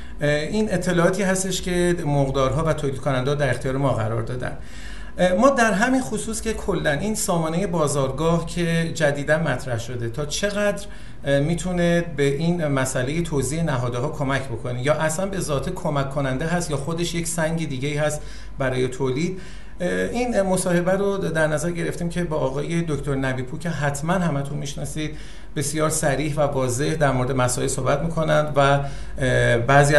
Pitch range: 135-175 Hz